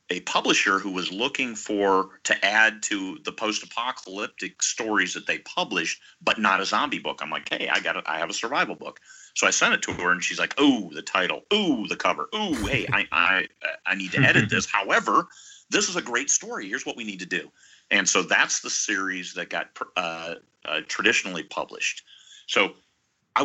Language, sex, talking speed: English, male, 205 wpm